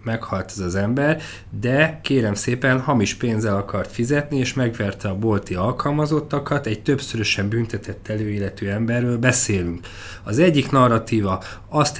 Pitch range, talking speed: 105-135 Hz, 130 wpm